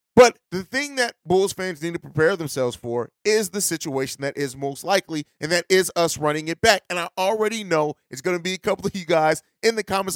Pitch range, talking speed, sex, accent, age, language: 160-220 Hz, 240 wpm, male, American, 30-49, English